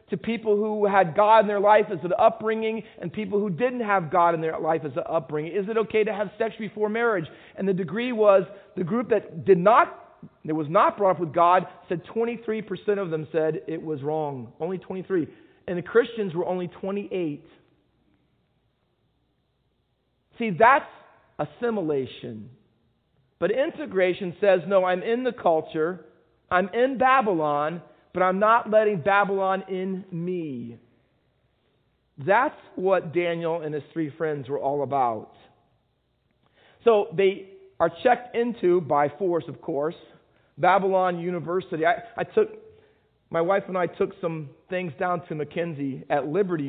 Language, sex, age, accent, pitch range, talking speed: English, male, 40-59, American, 160-205 Hz, 155 wpm